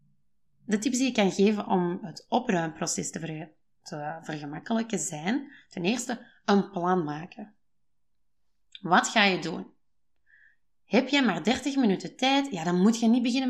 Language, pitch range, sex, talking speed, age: Dutch, 170-225 Hz, female, 145 wpm, 20-39